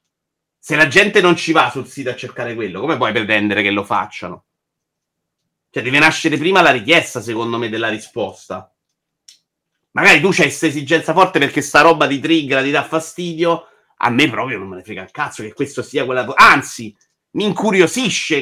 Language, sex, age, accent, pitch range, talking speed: Italian, male, 30-49, native, 130-175 Hz, 185 wpm